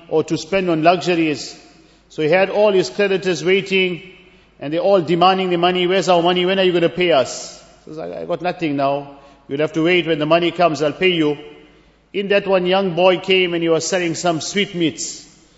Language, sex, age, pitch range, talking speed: English, male, 50-69, 165-195 Hz, 220 wpm